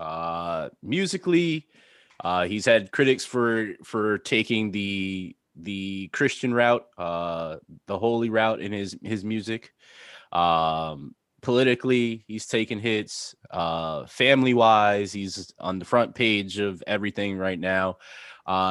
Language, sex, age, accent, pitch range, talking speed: English, male, 20-39, American, 95-115 Hz, 125 wpm